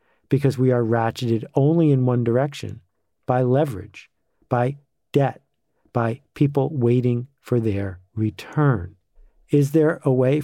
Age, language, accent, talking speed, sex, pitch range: 50-69, English, American, 125 wpm, male, 120-140 Hz